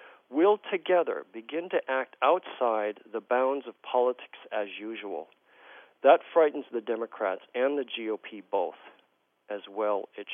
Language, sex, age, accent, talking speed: English, male, 40-59, American, 135 wpm